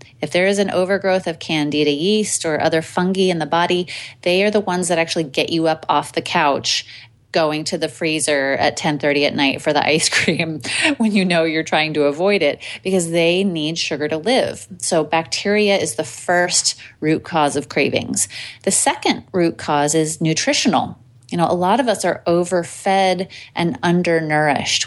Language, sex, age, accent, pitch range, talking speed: English, female, 30-49, American, 155-195 Hz, 185 wpm